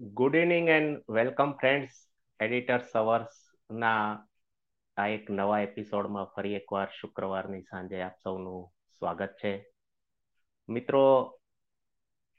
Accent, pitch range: native, 90-105 Hz